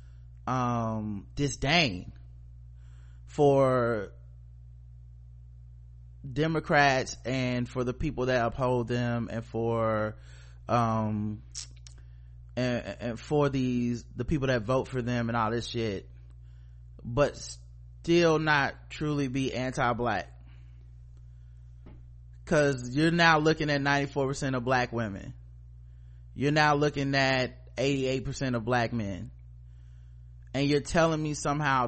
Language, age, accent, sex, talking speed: English, 20-39, American, male, 105 wpm